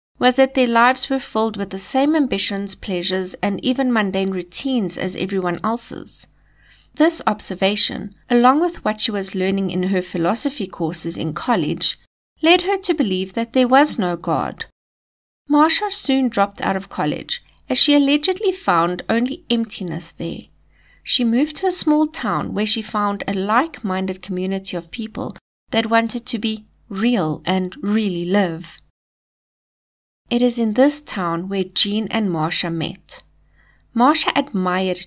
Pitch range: 185-265 Hz